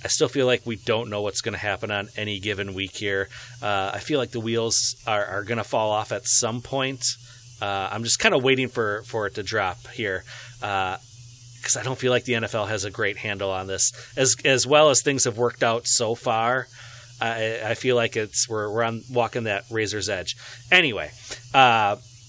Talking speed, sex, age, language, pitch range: 220 wpm, male, 30-49, English, 110-125 Hz